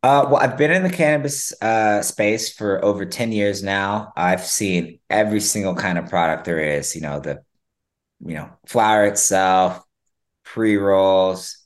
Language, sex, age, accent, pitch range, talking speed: English, male, 20-39, American, 90-110 Hz, 160 wpm